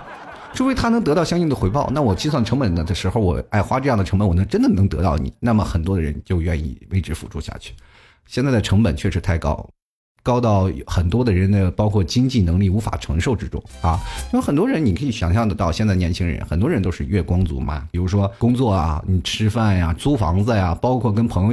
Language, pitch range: Chinese, 90-120 Hz